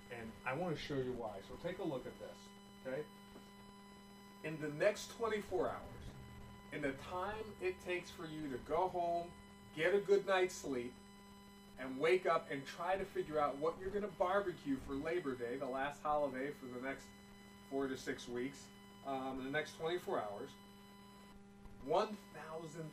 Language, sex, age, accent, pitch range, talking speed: English, male, 40-59, American, 130-200 Hz, 175 wpm